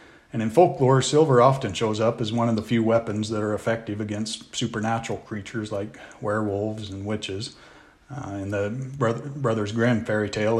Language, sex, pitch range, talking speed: English, male, 110-125 Hz, 170 wpm